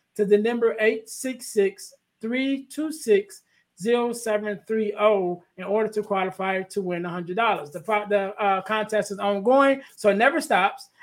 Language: English